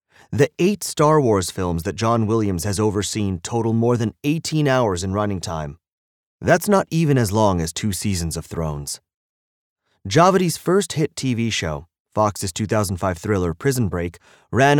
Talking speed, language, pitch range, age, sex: 160 wpm, English, 95-135 Hz, 30-49, male